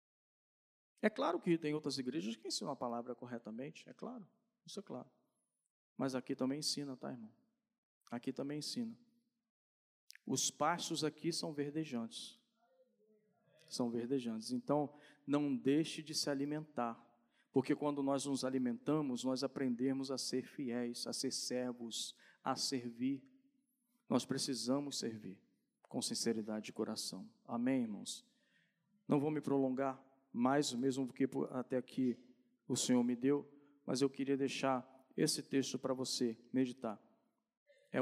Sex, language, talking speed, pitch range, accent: male, Portuguese, 135 wpm, 130-205 Hz, Brazilian